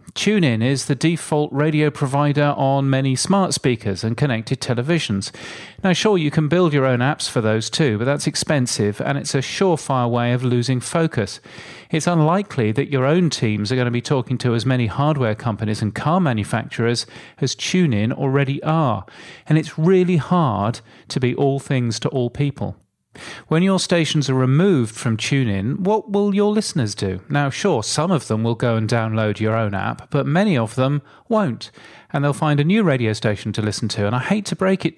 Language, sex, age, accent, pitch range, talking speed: English, male, 40-59, British, 115-155 Hz, 195 wpm